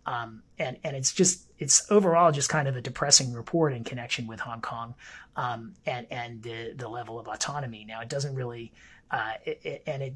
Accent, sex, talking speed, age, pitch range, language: American, male, 200 wpm, 30-49, 115-150 Hz, English